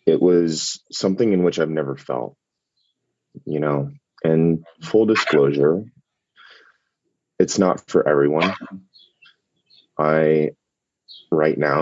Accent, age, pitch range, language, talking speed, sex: American, 30-49, 70-80 Hz, English, 100 wpm, male